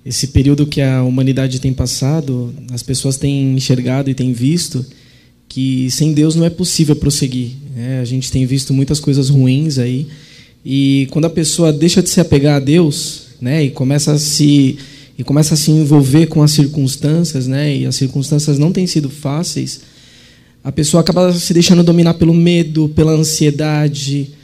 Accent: Brazilian